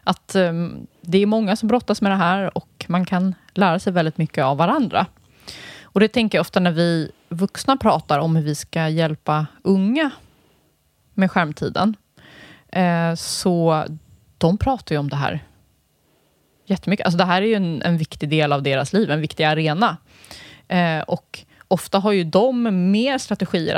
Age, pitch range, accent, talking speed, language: 20-39, 150-190 Hz, native, 165 wpm, Swedish